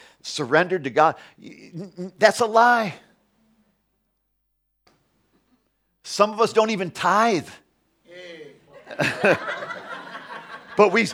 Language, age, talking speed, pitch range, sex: English, 50-69, 70 wpm, 120-190 Hz, male